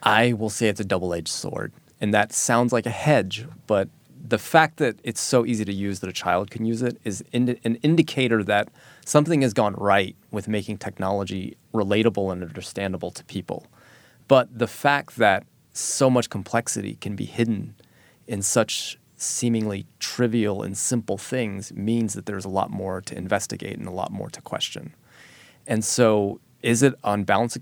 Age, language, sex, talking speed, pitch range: 20-39, English, male, 180 wpm, 100-120 Hz